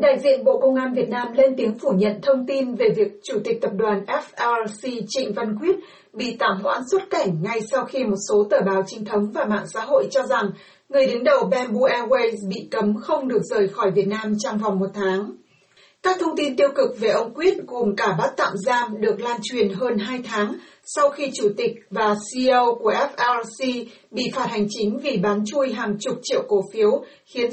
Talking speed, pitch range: 220 wpm, 210-275 Hz